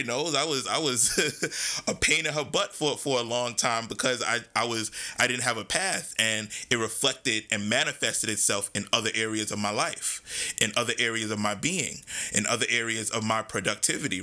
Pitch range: 110-135 Hz